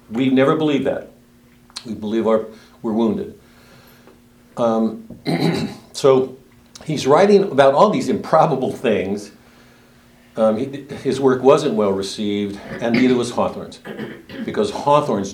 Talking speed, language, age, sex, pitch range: 115 wpm, English, 60-79, male, 100-120 Hz